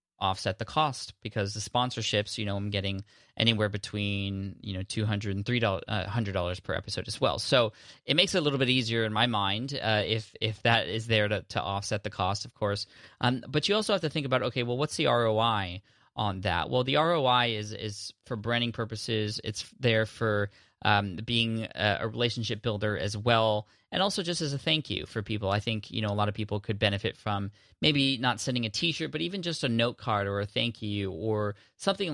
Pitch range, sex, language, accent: 105-125 Hz, male, English, American